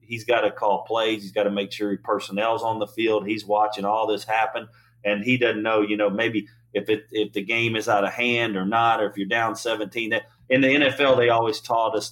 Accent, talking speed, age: American, 250 wpm, 40-59